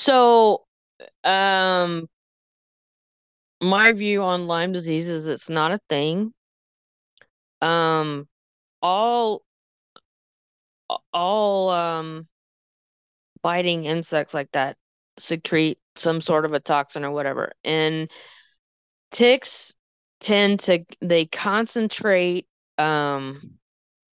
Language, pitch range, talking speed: English, 150-180 Hz, 85 wpm